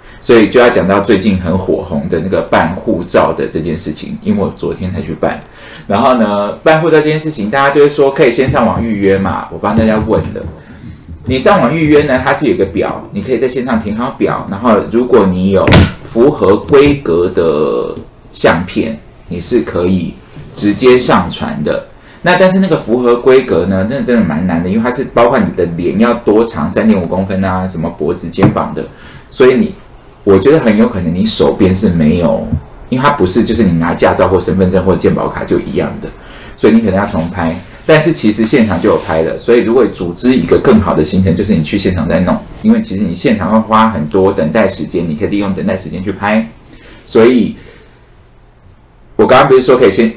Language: Chinese